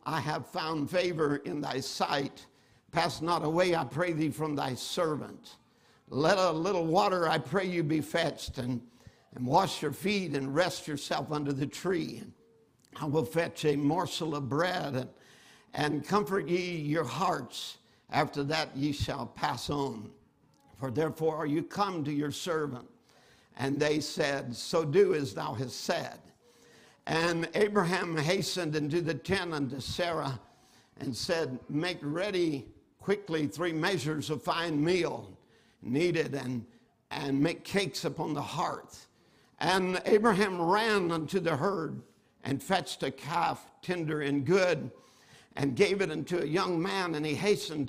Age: 60-79